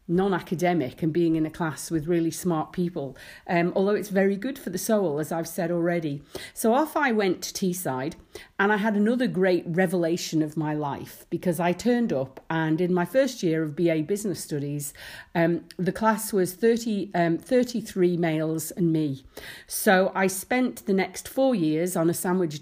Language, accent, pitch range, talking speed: English, British, 160-200 Hz, 185 wpm